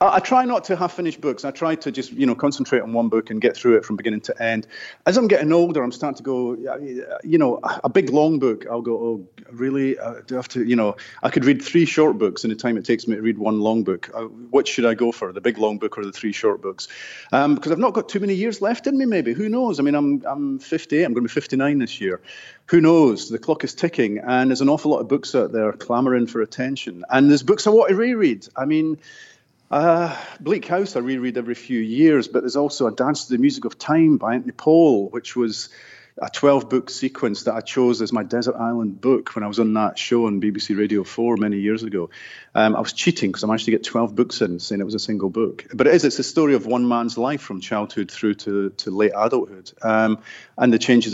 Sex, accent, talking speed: male, British, 260 wpm